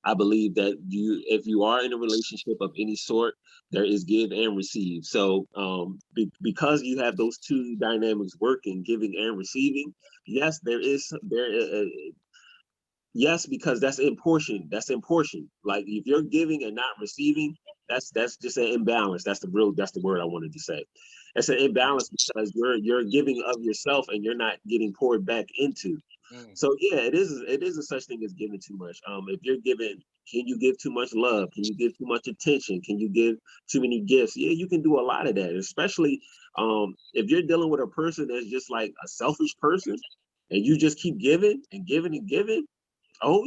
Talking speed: 205 wpm